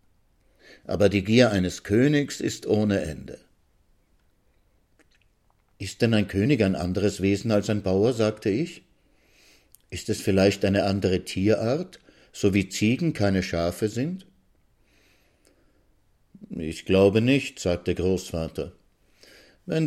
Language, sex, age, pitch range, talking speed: German, male, 60-79, 90-115 Hz, 115 wpm